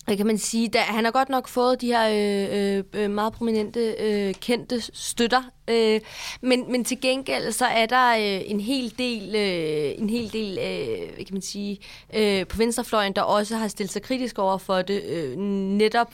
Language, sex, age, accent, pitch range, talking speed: Danish, female, 20-39, native, 195-230 Hz, 195 wpm